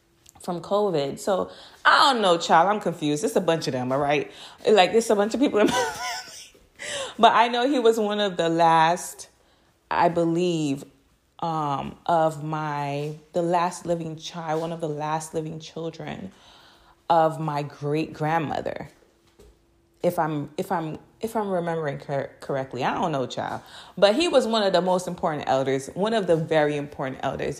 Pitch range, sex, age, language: 150-200 Hz, female, 20-39, English